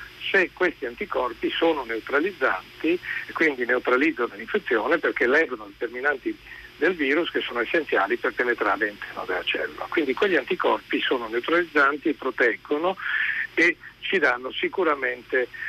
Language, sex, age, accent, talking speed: Italian, male, 60-79, native, 120 wpm